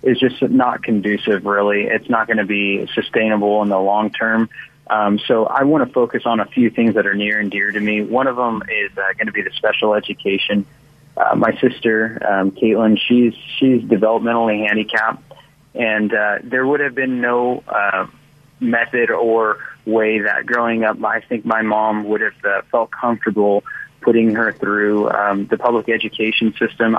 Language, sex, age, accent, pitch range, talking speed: English, male, 20-39, American, 105-115 Hz, 180 wpm